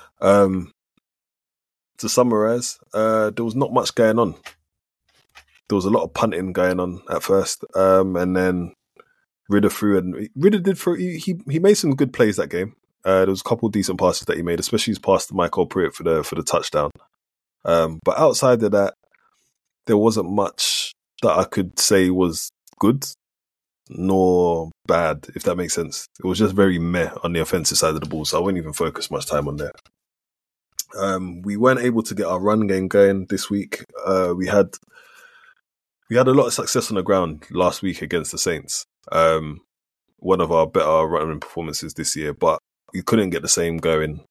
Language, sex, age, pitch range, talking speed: English, male, 20-39, 85-110 Hz, 200 wpm